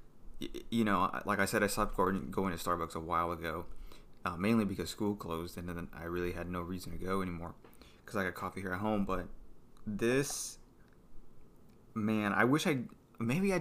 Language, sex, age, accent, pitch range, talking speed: English, male, 20-39, American, 90-110 Hz, 190 wpm